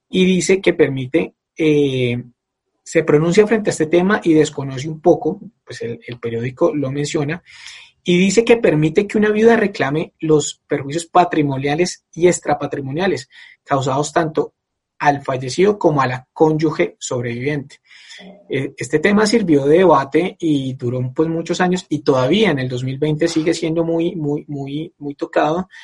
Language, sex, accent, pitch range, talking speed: Spanish, male, Colombian, 140-180 Hz, 150 wpm